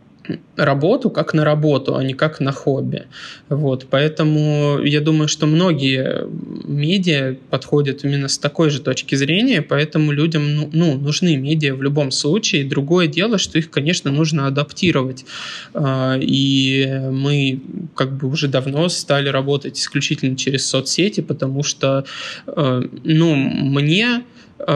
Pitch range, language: 135-155 Hz, Russian